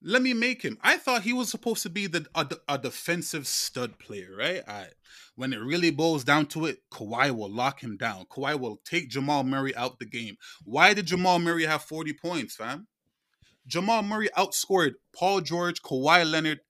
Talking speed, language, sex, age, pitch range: 195 wpm, English, male, 20-39, 155-205 Hz